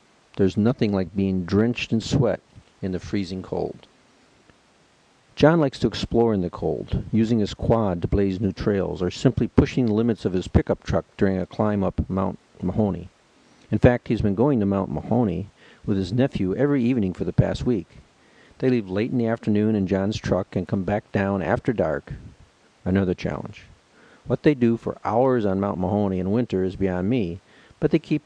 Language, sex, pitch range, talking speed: English, male, 95-120 Hz, 190 wpm